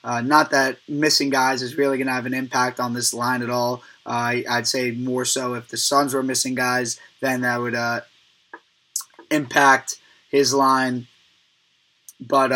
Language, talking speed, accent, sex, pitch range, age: English, 175 wpm, American, male, 125-145 Hz, 20-39